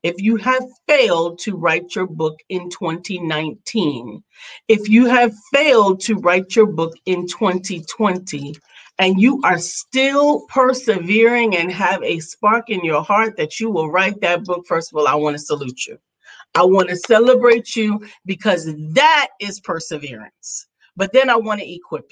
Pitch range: 175-230 Hz